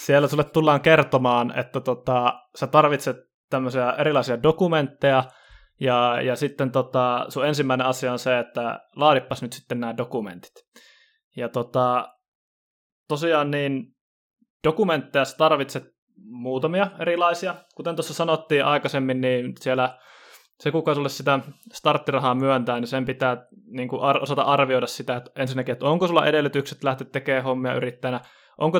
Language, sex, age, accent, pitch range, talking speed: Finnish, male, 20-39, native, 125-150 Hz, 140 wpm